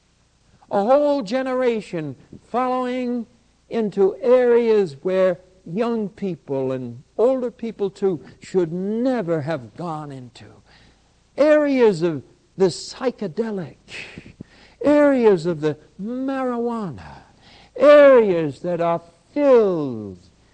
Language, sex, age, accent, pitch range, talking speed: English, male, 60-79, American, 175-255 Hz, 90 wpm